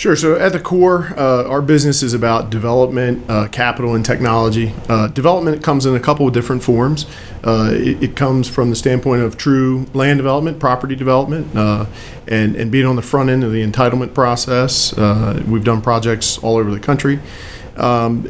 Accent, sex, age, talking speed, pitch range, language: American, male, 40-59, 190 wpm, 115-140 Hz, English